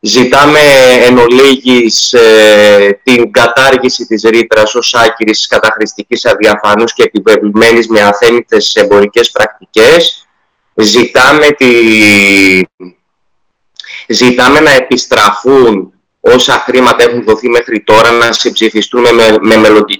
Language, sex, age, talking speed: Greek, male, 20-39, 105 wpm